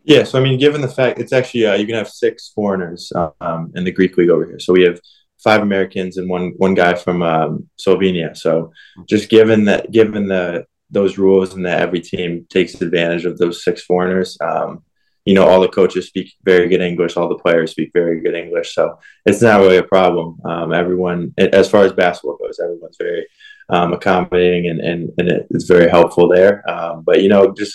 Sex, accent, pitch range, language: male, American, 90-105 Hz, English